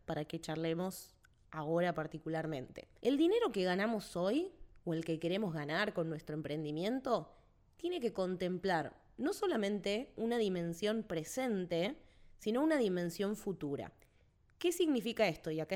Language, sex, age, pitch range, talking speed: Spanish, female, 20-39, 165-220 Hz, 135 wpm